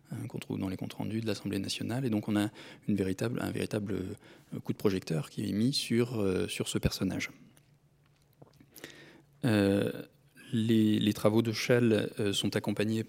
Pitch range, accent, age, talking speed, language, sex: 100-120 Hz, French, 20-39, 160 wpm, French, male